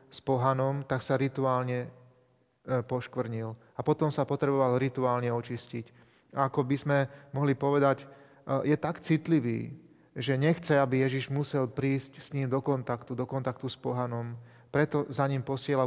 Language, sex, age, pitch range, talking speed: Slovak, male, 30-49, 135-155 Hz, 150 wpm